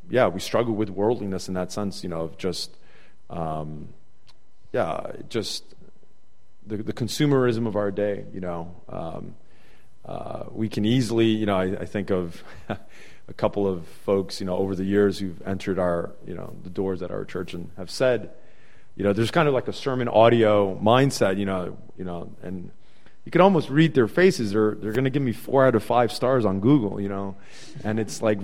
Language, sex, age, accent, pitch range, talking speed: English, male, 30-49, American, 95-120 Hz, 200 wpm